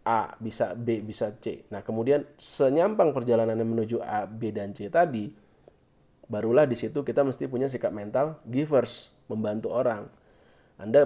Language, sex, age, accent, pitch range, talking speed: Indonesian, male, 20-39, native, 115-130 Hz, 145 wpm